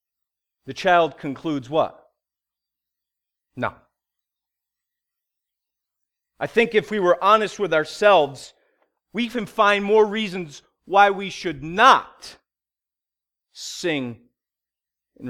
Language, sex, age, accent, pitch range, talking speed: English, male, 40-59, American, 155-240 Hz, 95 wpm